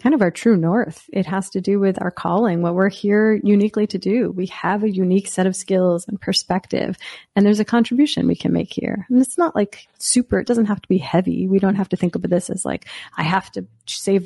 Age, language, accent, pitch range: 30-49, English, American, 180-220 Hz